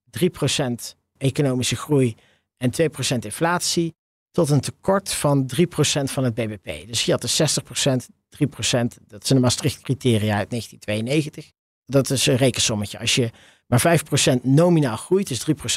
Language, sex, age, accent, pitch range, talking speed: Dutch, male, 50-69, Dutch, 120-155 Hz, 140 wpm